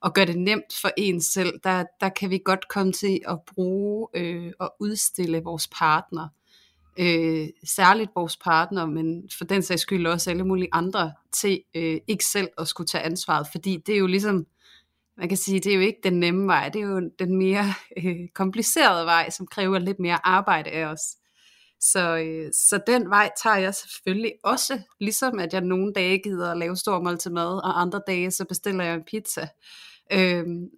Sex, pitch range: female, 170-195 Hz